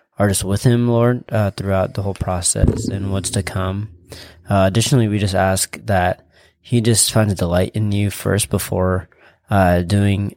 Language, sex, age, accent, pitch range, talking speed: English, male, 20-39, American, 95-110 Hz, 175 wpm